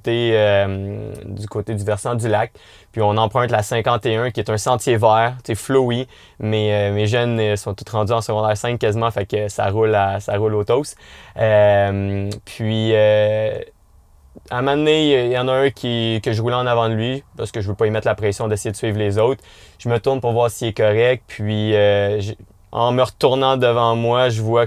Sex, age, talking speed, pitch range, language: male, 20-39, 210 wpm, 100-115 Hz, French